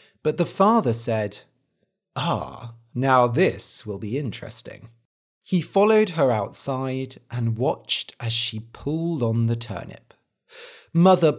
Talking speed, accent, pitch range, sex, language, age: 120 wpm, British, 115-185 Hz, male, English, 30-49